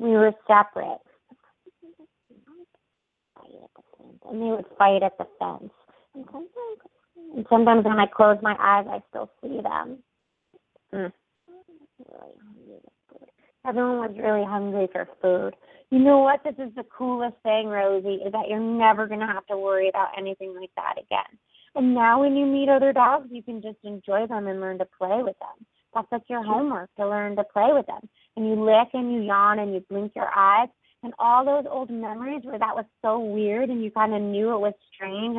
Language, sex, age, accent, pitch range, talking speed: English, female, 30-49, American, 205-255 Hz, 180 wpm